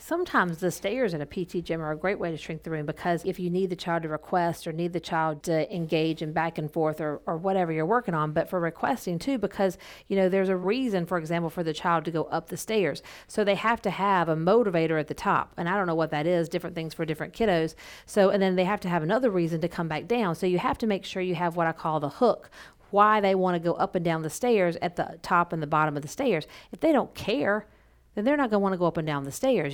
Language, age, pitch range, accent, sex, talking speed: English, 40-59, 165-210 Hz, American, female, 290 wpm